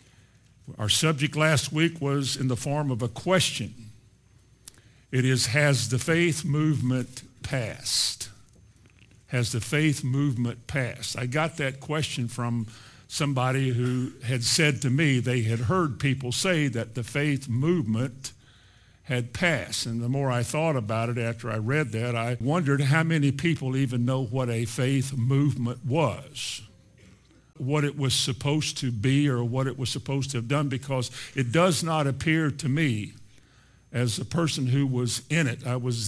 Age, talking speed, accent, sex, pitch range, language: 50-69, 165 wpm, American, male, 120-145 Hz, English